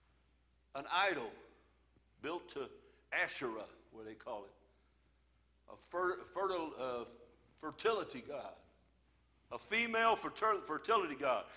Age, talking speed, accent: 60-79, 90 wpm, American